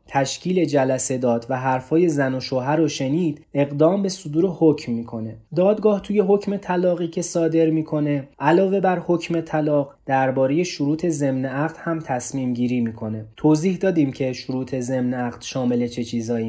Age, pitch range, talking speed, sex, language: 20-39, 130-160 Hz, 155 wpm, male, Persian